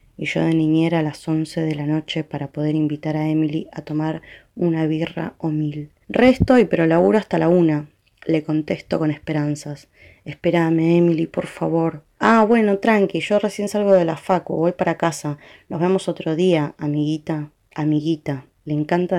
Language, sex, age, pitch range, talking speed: Spanish, female, 20-39, 150-180 Hz, 175 wpm